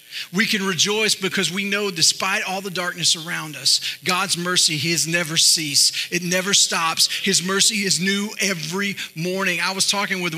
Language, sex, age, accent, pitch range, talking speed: English, male, 40-59, American, 160-200 Hz, 180 wpm